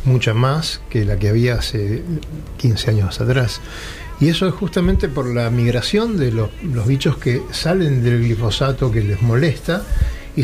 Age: 60-79